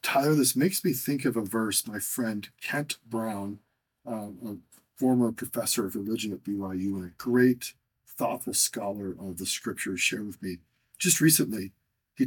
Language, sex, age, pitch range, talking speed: English, male, 40-59, 105-135 Hz, 165 wpm